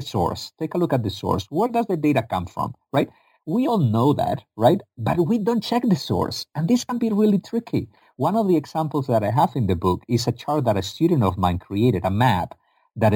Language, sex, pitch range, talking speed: English, male, 100-155 Hz, 240 wpm